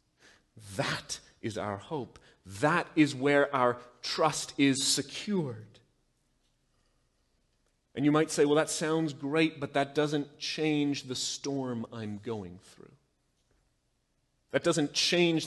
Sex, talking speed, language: male, 120 wpm, English